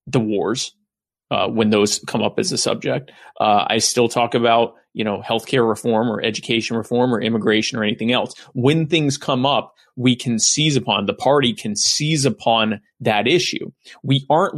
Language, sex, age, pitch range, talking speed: English, male, 30-49, 115-135 Hz, 180 wpm